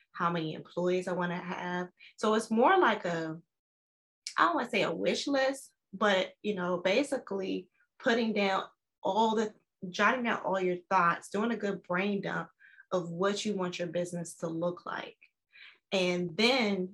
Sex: female